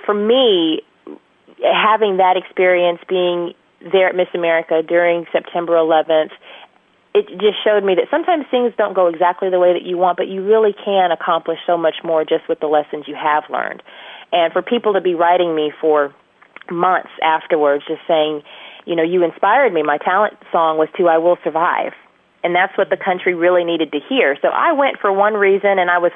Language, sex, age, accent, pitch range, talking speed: English, female, 30-49, American, 165-195 Hz, 195 wpm